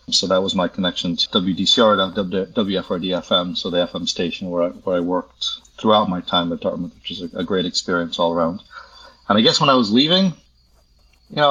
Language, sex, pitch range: English, male, 100-140 Hz